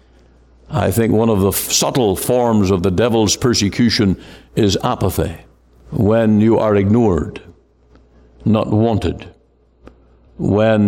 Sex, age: male, 60-79